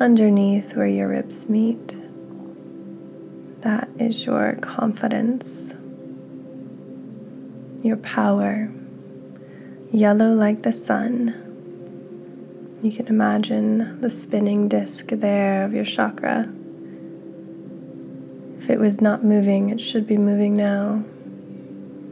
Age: 20-39